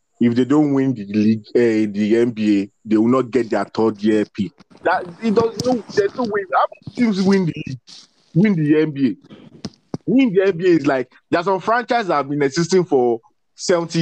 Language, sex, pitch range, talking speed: English, male, 115-170 Hz, 210 wpm